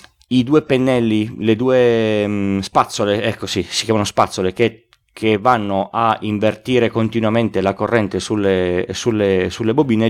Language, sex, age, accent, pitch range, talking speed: Italian, male, 30-49, native, 100-125 Hz, 145 wpm